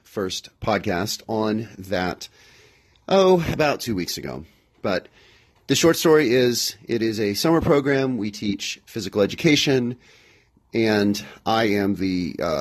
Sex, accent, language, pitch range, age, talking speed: male, American, English, 100-130 Hz, 40-59, 135 wpm